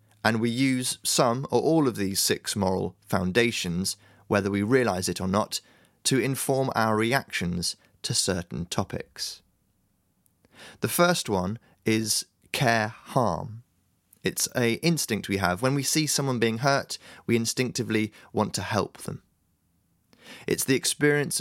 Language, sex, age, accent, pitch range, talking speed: English, male, 20-39, British, 95-130 Hz, 135 wpm